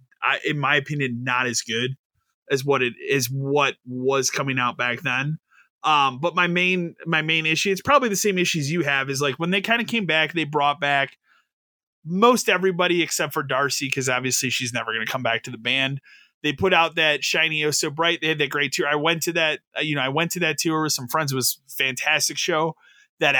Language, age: English, 20-39